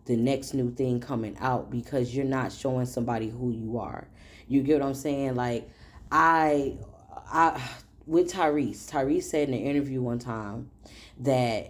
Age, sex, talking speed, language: 10-29, female, 165 wpm, English